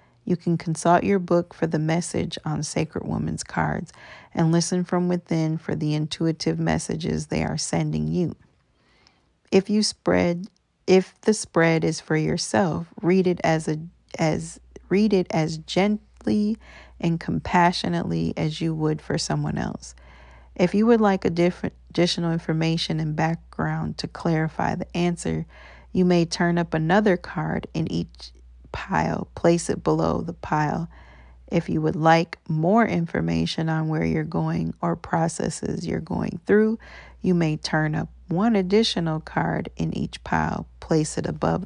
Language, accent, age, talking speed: English, American, 40-59, 155 wpm